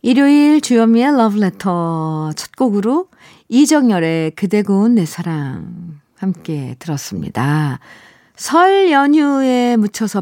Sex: female